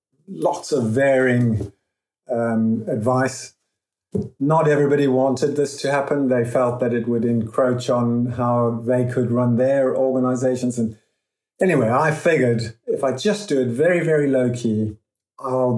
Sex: male